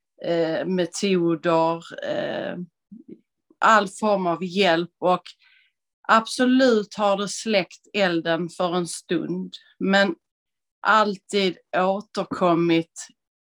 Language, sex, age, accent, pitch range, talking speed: Swedish, female, 30-49, native, 175-205 Hz, 75 wpm